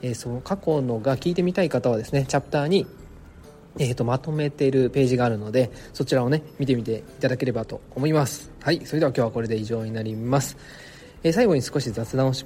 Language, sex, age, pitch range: Japanese, male, 20-39, 120-155 Hz